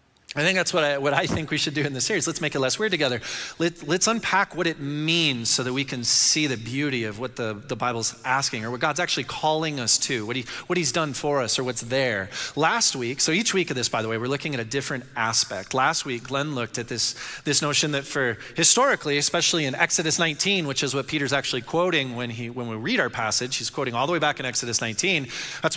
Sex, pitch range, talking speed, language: male, 120-155 Hz, 255 wpm, English